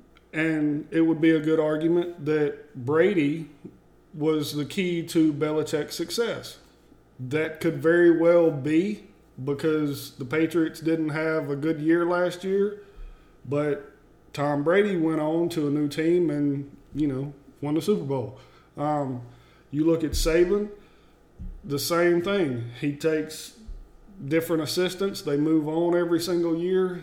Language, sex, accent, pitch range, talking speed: English, male, American, 145-170 Hz, 140 wpm